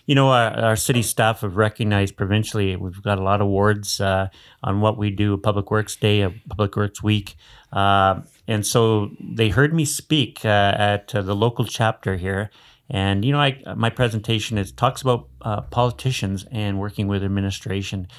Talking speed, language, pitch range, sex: 180 wpm, English, 100-110 Hz, male